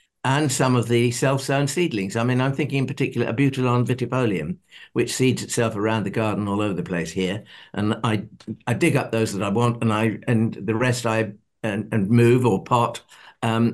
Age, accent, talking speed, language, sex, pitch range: 60-79, British, 205 wpm, English, male, 115-145 Hz